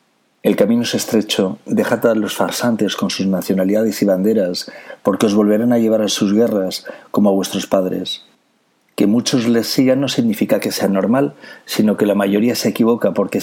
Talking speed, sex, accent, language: 185 wpm, male, Spanish, Spanish